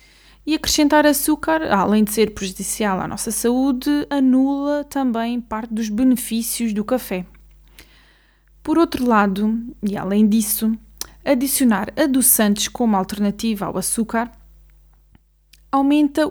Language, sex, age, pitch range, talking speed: Portuguese, female, 20-39, 210-275 Hz, 110 wpm